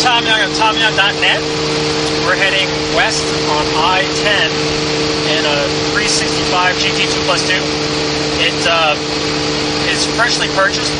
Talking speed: 110 wpm